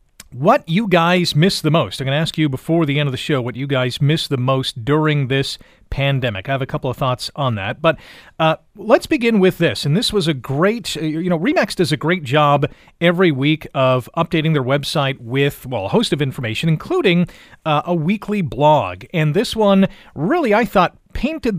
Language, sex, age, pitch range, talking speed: English, male, 40-59, 145-180 Hz, 210 wpm